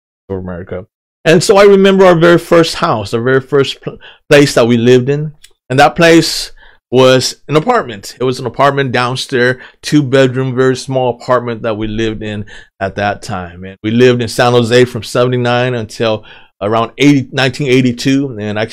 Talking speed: 165 wpm